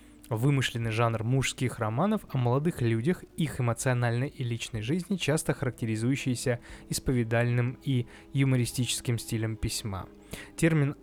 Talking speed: 110 wpm